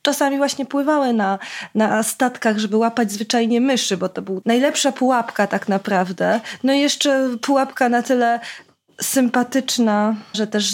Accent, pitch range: native, 220-275 Hz